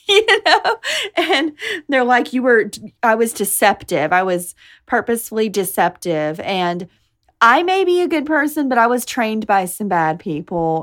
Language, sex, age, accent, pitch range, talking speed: English, female, 30-49, American, 185-300 Hz, 160 wpm